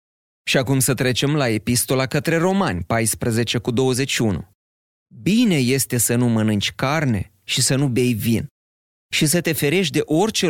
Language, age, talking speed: Romanian, 30-49, 160 wpm